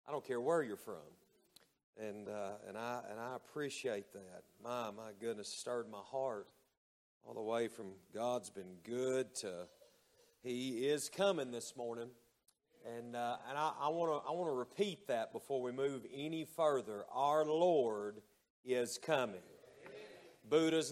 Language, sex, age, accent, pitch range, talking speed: English, male, 40-59, American, 115-155 Hz, 150 wpm